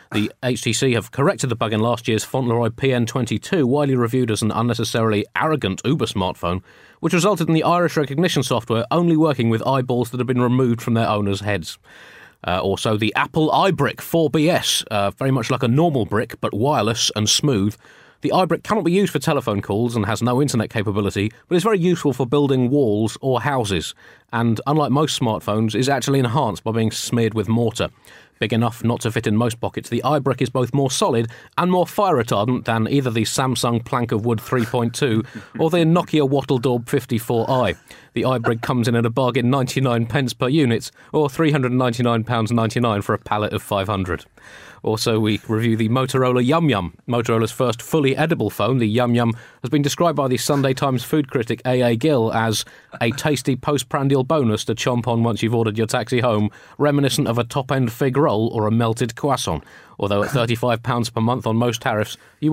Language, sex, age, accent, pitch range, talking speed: English, male, 30-49, British, 110-140 Hz, 190 wpm